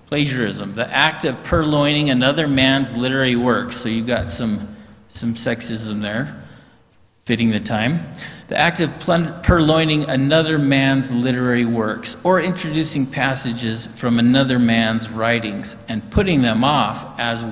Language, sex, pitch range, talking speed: English, male, 120-145 Hz, 135 wpm